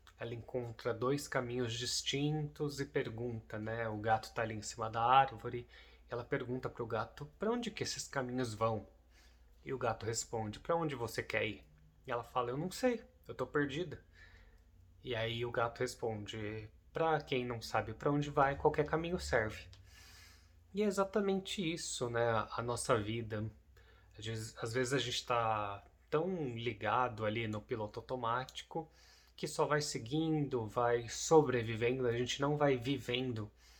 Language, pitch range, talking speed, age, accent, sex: Portuguese, 105-130 Hz, 160 wpm, 20-39, Brazilian, male